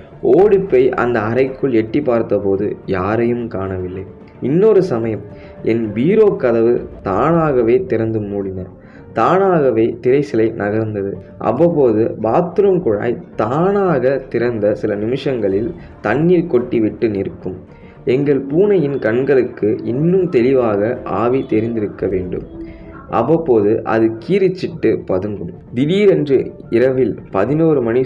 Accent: native